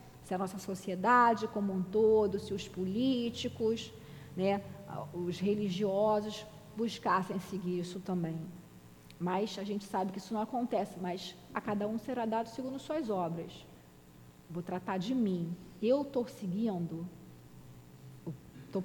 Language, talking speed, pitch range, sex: Portuguese, 135 wpm, 180-230 Hz, female